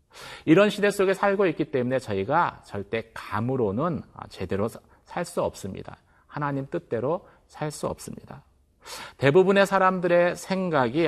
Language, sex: Korean, male